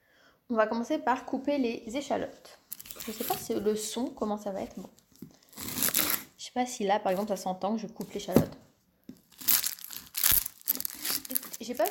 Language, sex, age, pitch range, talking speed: French, female, 20-39, 205-260 Hz, 180 wpm